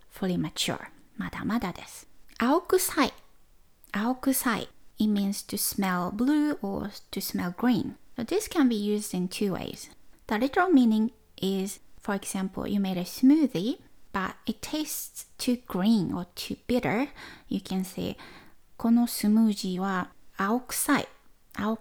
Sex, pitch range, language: female, 195-250 Hz, Japanese